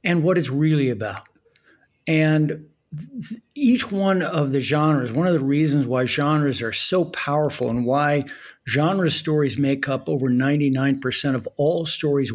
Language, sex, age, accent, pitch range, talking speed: English, male, 50-69, American, 135-165 Hz, 155 wpm